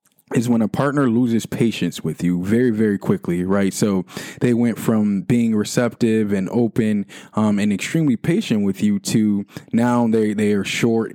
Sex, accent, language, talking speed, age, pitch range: male, American, English, 170 wpm, 20-39, 100-120 Hz